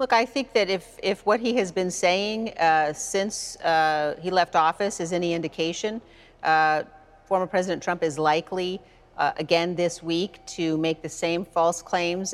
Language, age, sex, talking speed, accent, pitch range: English, 40-59, female, 175 wpm, American, 155-185 Hz